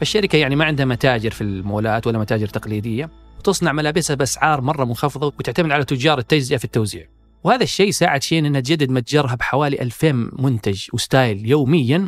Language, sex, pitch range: Arabic, male, 120-160 Hz